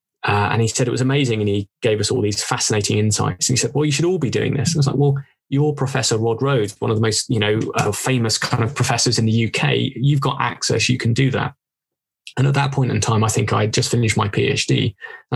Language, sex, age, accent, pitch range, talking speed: English, male, 20-39, British, 115-135 Hz, 275 wpm